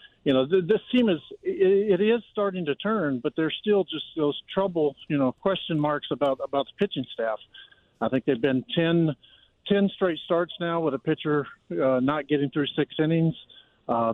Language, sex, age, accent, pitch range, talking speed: English, male, 50-69, American, 140-175 Hz, 185 wpm